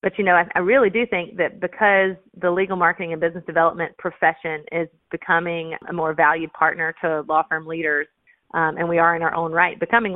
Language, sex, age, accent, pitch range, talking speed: English, female, 30-49, American, 160-185 Hz, 205 wpm